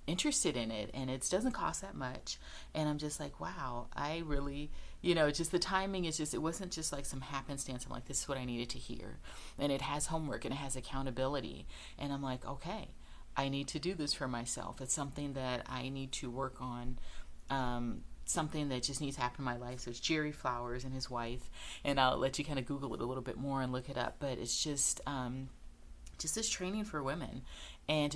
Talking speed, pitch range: 230 wpm, 125-150 Hz